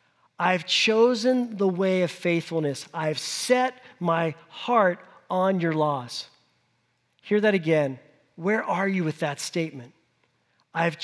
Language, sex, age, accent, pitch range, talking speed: English, male, 50-69, American, 145-195 Hz, 125 wpm